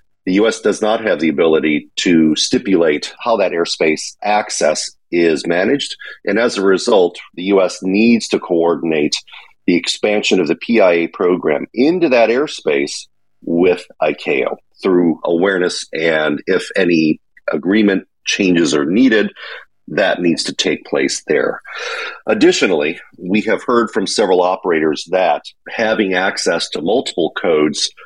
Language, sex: English, male